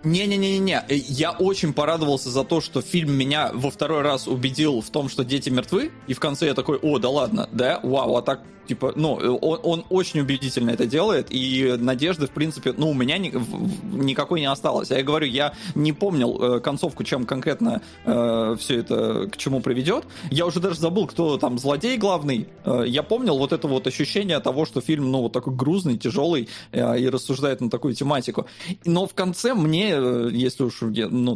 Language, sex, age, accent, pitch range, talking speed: Russian, male, 20-39, native, 130-170 Hz, 195 wpm